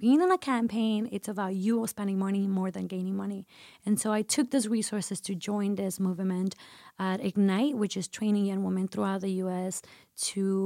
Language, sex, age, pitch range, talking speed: English, female, 20-39, 190-215 Hz, 195 wpm